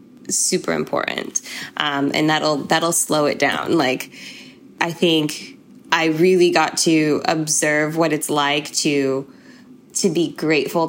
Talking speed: 130 wpm